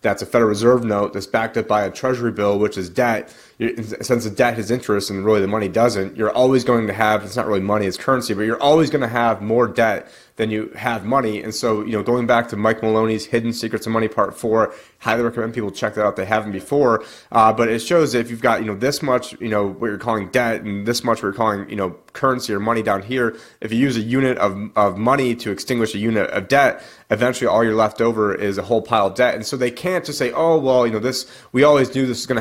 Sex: male